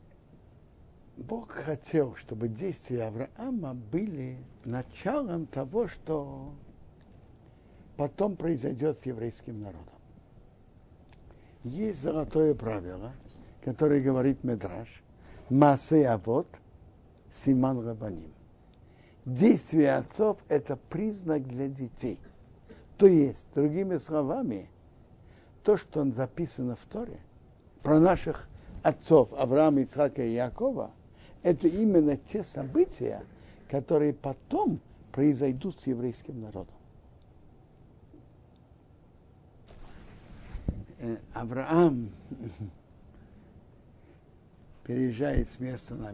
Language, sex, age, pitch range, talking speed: Russian, male, 60-79, 110-150 Hz, 80 wpm